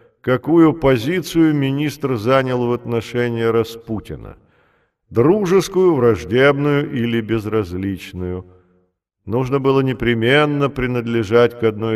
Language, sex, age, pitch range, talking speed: Russian, male, 40-59, 110-135 Hz, 85 wpm